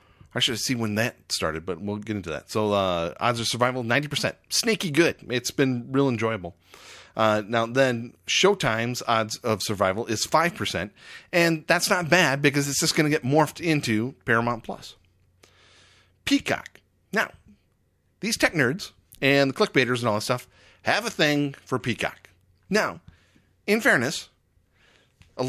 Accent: American